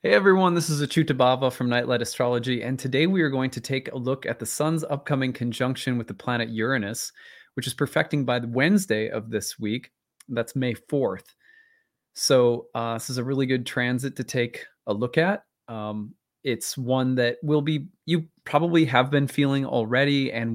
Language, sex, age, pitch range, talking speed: English, male, 20-39, 115-145 Hz, 185 wpm